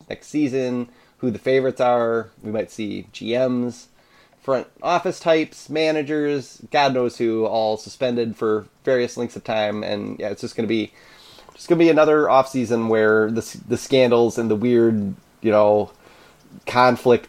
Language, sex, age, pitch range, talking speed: English, male, 30-49, 115-135 Hz, 155 wpm